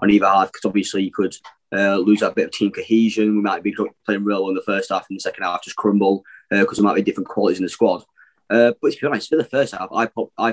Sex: male